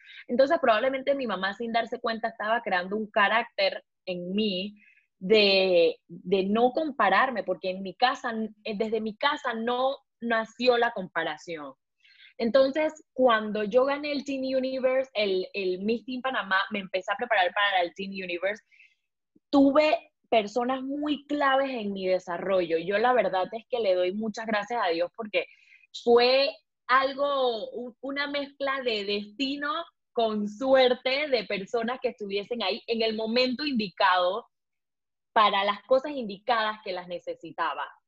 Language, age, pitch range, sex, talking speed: Spanish, 10-29, 205-270 Hz, female, 145 wpm